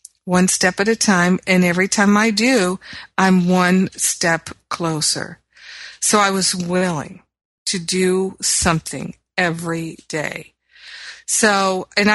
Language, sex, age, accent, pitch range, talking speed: English, female, 50-69, American, 175-195 Hz, 125 wpm